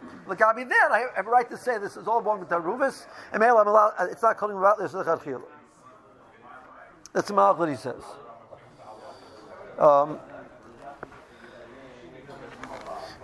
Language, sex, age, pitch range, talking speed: English, male, 60-79, 145-210 Hz, 145 wpm